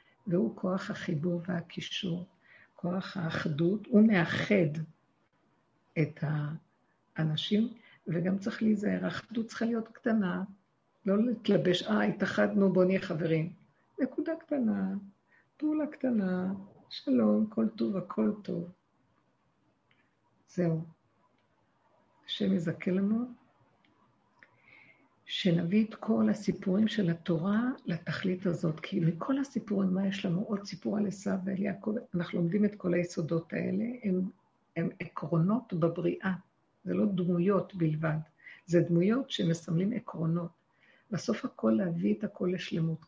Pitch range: 170-210 Hz